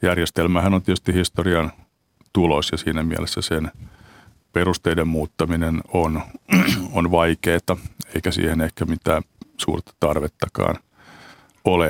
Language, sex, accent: Finnish, male, native